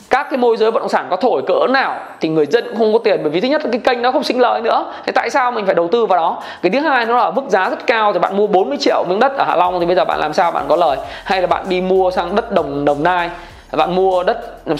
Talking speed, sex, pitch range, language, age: 335 wpm, male, 170-220 Hz, Vietnamese, 20-39